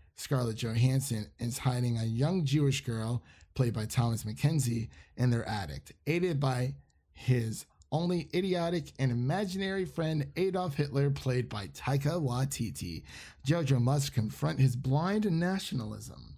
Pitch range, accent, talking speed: 120-160 Hz, American, 130 wpm